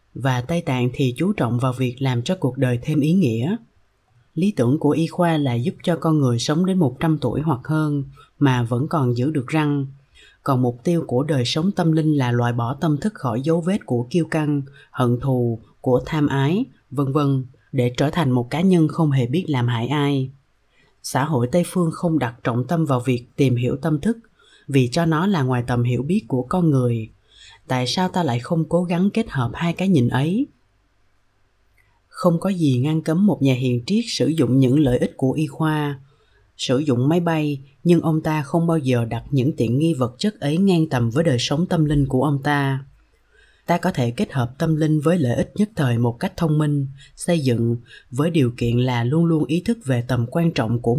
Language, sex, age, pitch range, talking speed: Vietnamese, female, 20-39, 125-165 Hz, 220 wpm